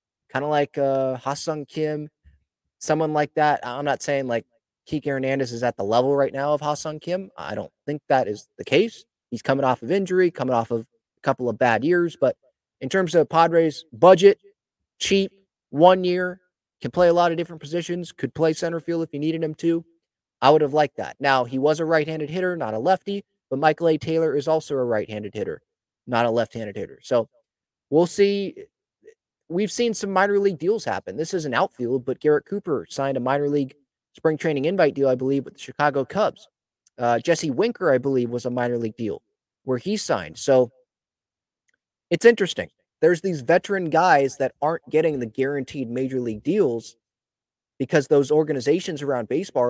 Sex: male